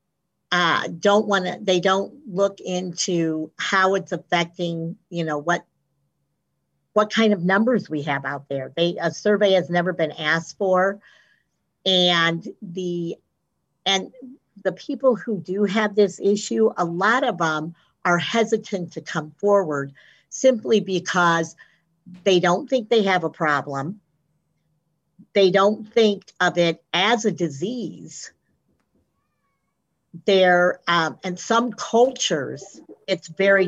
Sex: female